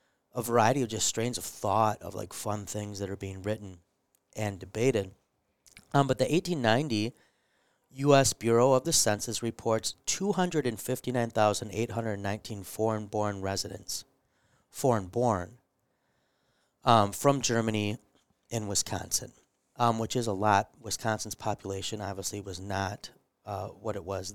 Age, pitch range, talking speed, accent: 30-49, 100-120 Hz, 120 wpm, American